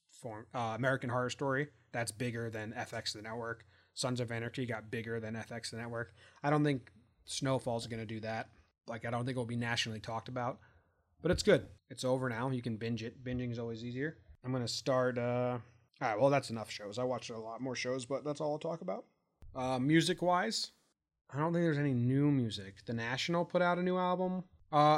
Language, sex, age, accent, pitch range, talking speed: English, male, 30-49, American, 115-140 Hz, 220 wpm